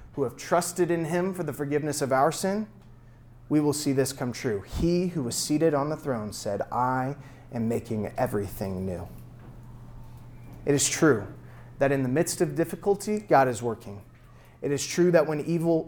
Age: 30-49